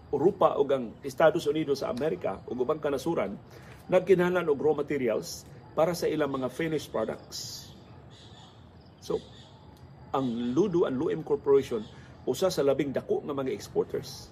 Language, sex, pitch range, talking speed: Filipino, male, 120-175 Hz, 145 wpm